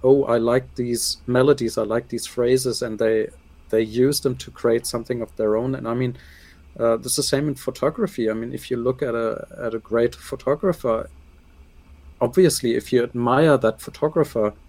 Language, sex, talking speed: English, male, 190 wpm